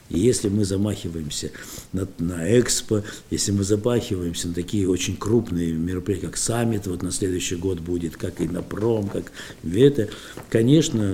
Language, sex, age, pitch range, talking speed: Russian, male, 60-79, 85-115 Hz, 150 wpm